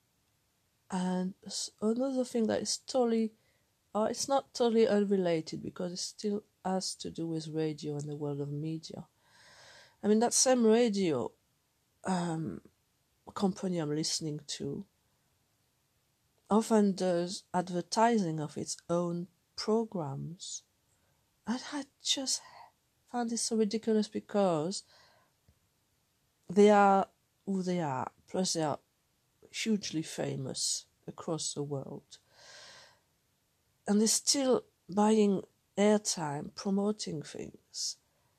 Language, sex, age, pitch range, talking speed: English, female, 50-69, 155-210 Hz, 110 wpm